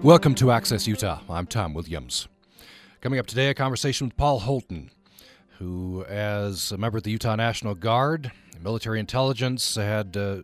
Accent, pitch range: American, 100-130 Hz